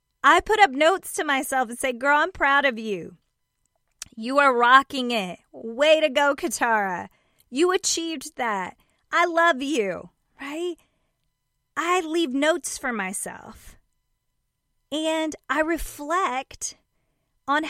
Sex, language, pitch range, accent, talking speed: female, English, 260-360 Hz, American, 125 wpm